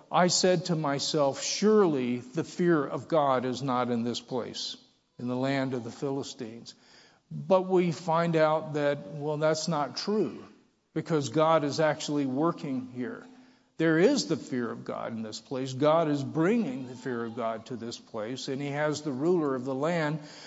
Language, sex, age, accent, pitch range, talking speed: English, male, 50-69, American, 140-185 Hz, 180 wpm